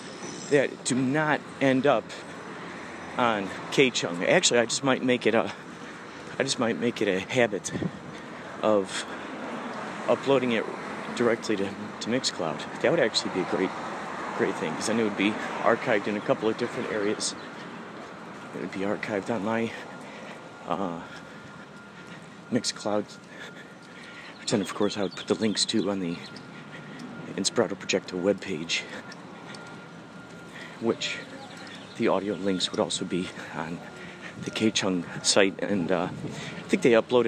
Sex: male